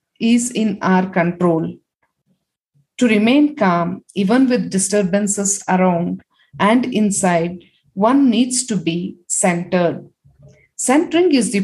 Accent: Indian